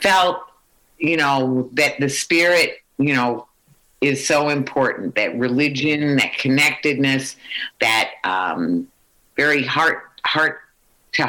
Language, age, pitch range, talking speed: English, 50-69, 130-195 Hz, 110 wpm